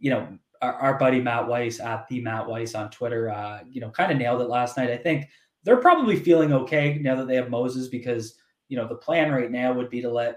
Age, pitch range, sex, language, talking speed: 20-39, 120-140 Hz, male, English, 255 wpm